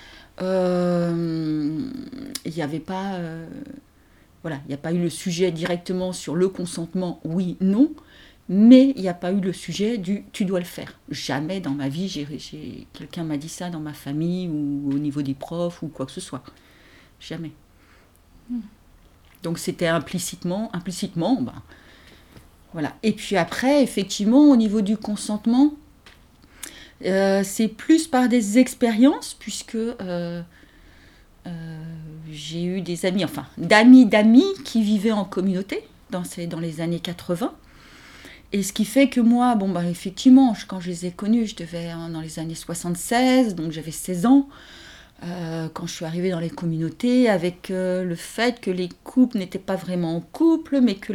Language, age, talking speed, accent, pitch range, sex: French, 50-69, 175 wpm, French, 165-215 Hz, female